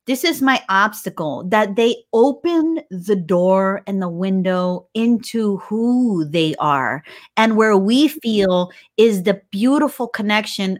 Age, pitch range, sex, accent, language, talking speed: 30-49, 195-245 Hz, female, American, English, 135 wpm